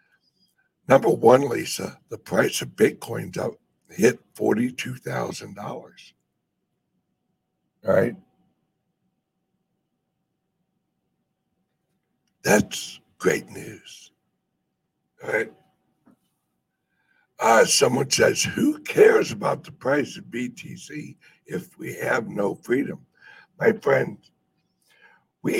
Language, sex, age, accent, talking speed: English, male, 60-79, American, 80 wpm